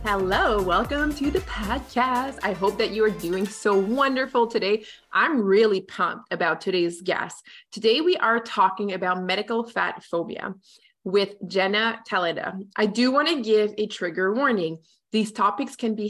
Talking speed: 160 wpm